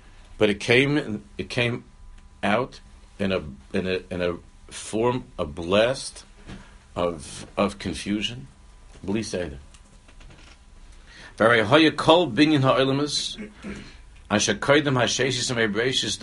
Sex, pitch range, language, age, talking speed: male, 90-125 Hz, English, 60-79, 60 wpm